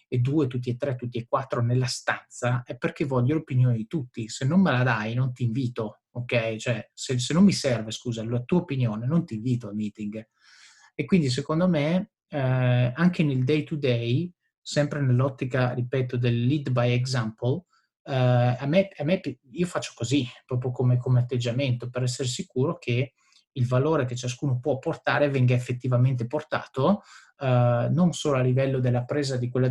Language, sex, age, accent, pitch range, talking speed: Italian, male, 30-49, native, 120-145 Hz, 180 wpm